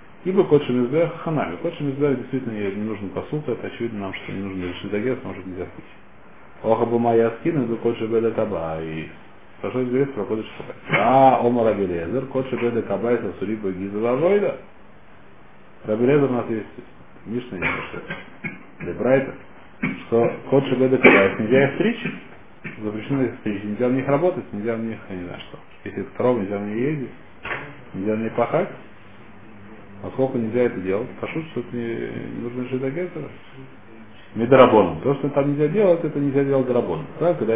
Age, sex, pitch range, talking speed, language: 40-59, male, 105-135 Hz, 150 wpm, Russian